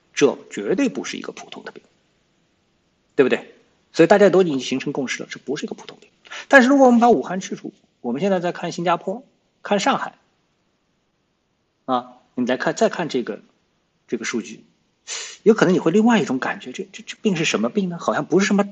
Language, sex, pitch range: Chinese, male, 130-200 Hz